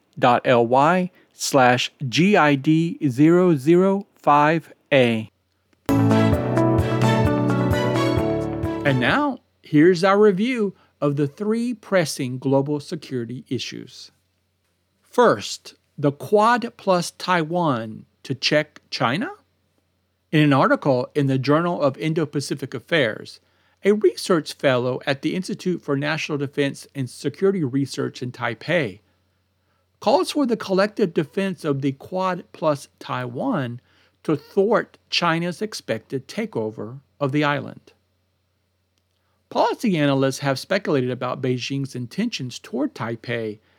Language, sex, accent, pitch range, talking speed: English, male, American, 120-185 Hz, 95 wpm